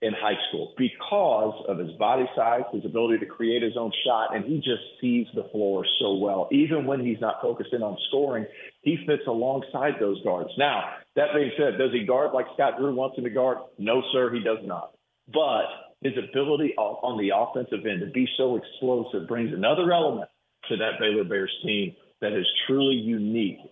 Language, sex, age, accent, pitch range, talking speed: English, male, 50-69, American, 110-160 Hz, 195 wpm